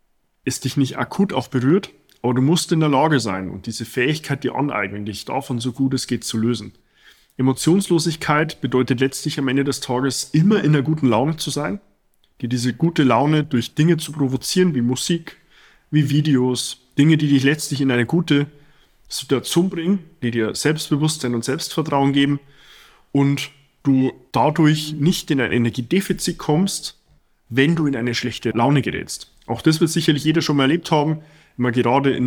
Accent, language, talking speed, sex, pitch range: German, German, 175 wpm, male, 120-150 Hz